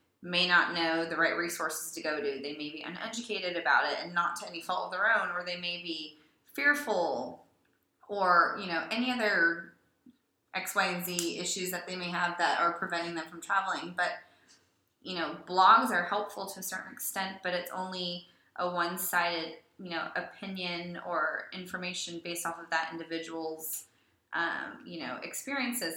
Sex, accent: female, American